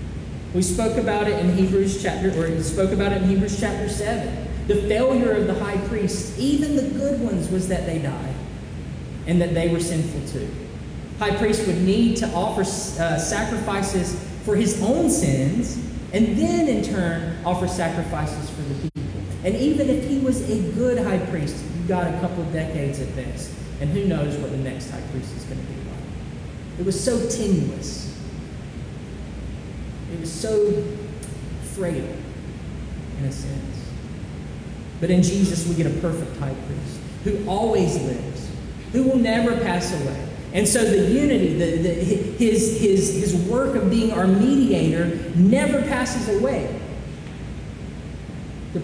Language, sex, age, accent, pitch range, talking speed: English, male, 30-49, American, 170-220 Hz, 160 wpm